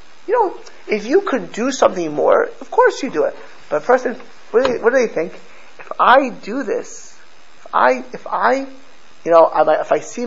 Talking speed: 205 wpm